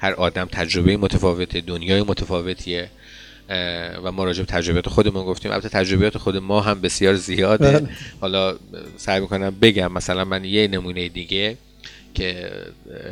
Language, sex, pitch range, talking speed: Persian, male, 90-110 Hz, 130 wpm